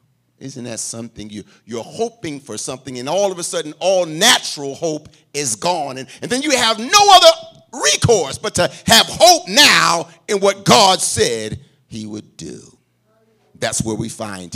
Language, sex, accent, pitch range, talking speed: English, male, American, 125-195 Hz, 175 wpm